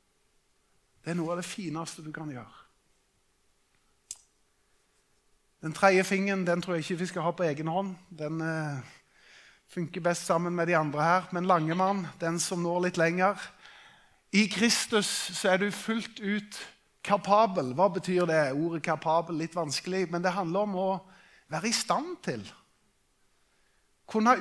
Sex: male